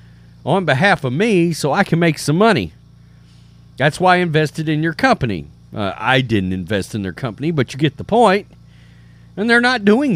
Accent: American